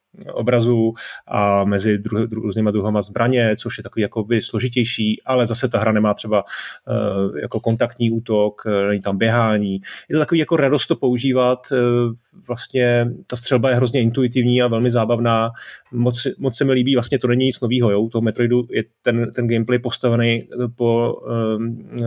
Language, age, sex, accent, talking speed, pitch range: Czech, 30-49, male, native, 175 wpm, 110-125 Hz